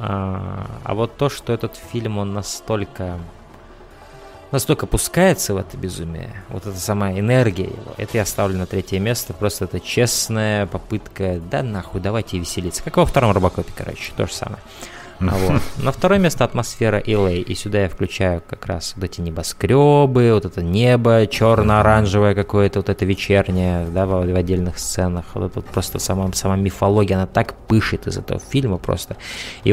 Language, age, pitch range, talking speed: Russian, 20-39, 95-120 Hz, 170 wpm